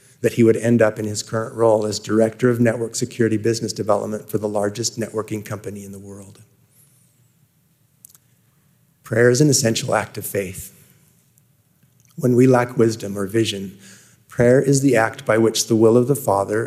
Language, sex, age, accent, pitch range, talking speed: English, male, 30-49, American, 105-130 Hz, 175 wpm